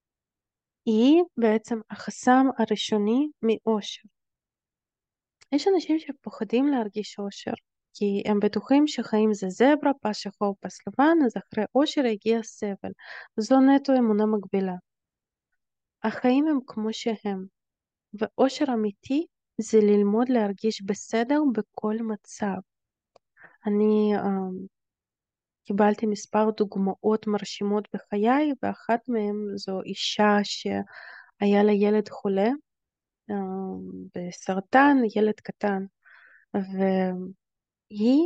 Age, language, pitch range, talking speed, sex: 20-39, Hebrew, 205-245 Hz, 95 wpm, female